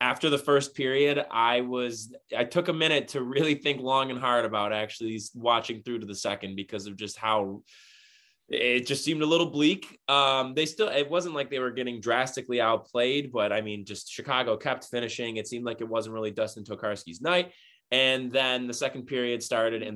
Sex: male